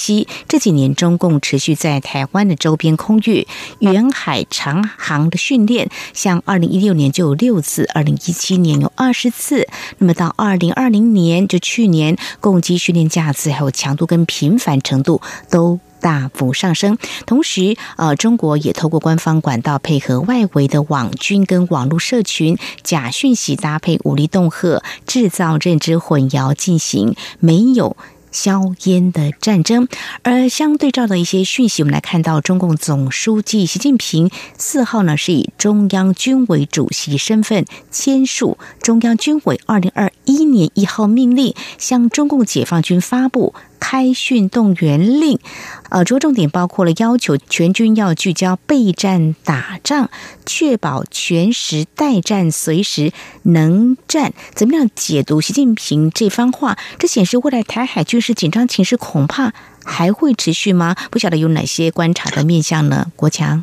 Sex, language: female, Chinese